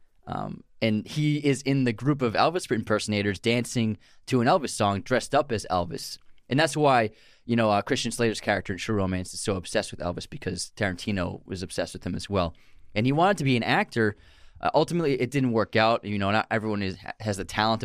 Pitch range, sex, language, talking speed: 100-125 Hz, male, English, 220 wpm